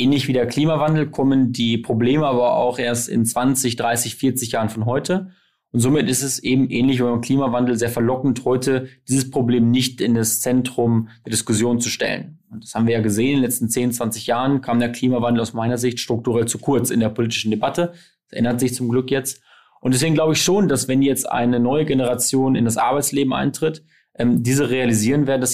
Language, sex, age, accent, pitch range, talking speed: German, male, 20-39, German, 120-135 Hz, 210 wpm